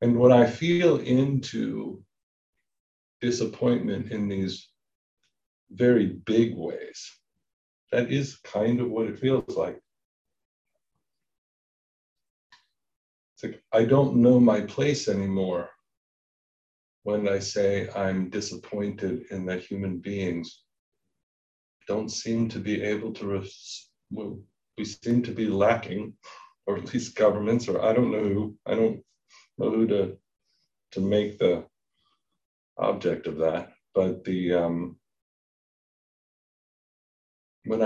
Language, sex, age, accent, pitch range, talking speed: English, male, 50-69, American, 90-115 Hz, 115 wpm